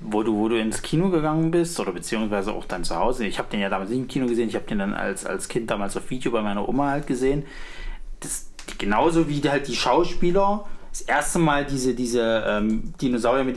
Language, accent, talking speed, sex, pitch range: German, German, 235 wpm, male, 120-155 Hz